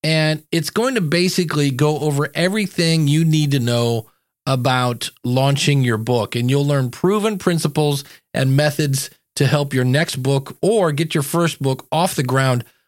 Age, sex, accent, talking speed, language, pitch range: 40-59, male, American, 170 wpm, English, 130-170 Hz